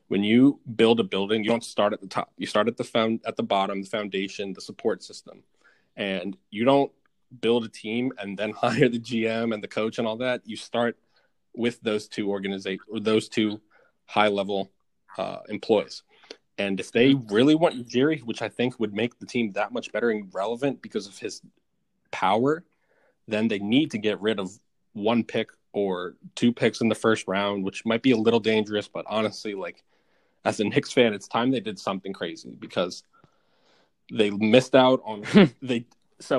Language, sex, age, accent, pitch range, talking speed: English, male, 20-39, American, 100-120 Hz, 195 wpm